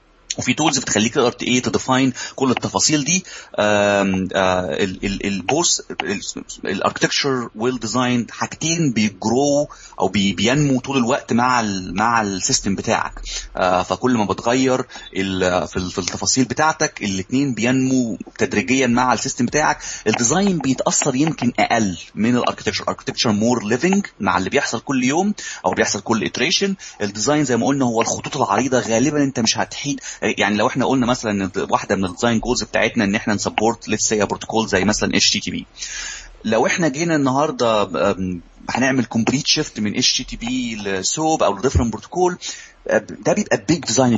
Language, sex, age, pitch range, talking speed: Arabic, male, 30-49, 100-140 Hz, 145 wpm